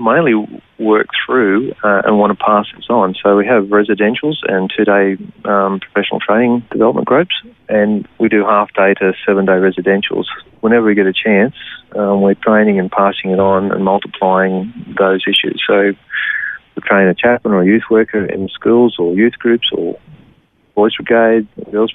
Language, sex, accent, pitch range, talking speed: English, male, Australian, 95-105 Hz, 165 wpm